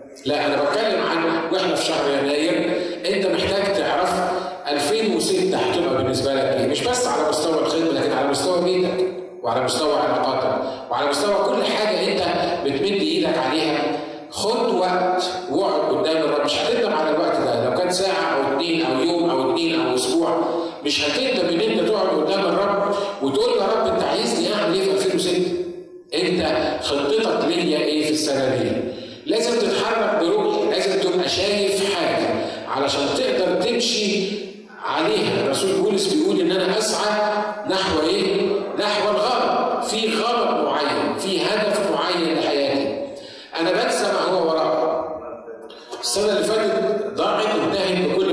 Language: Arabic